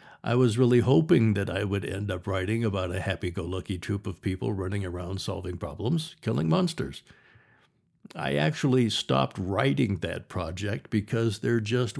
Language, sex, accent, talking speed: English, male, American, 155 wpm